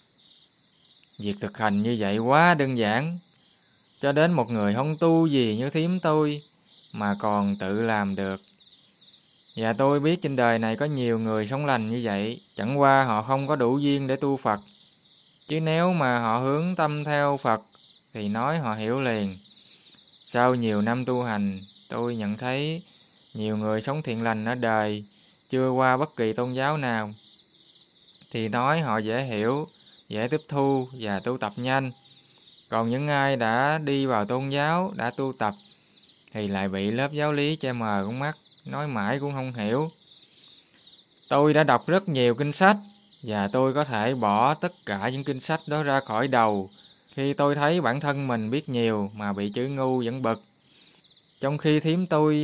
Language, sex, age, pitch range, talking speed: Vietnamese, male, 20-39, 110-150 Hz, 180 wpm